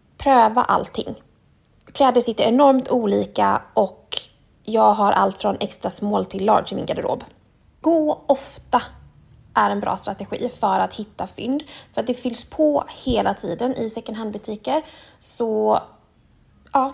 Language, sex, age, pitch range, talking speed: Swedish, female, 20-39, 200-265 Hz, 145 wpm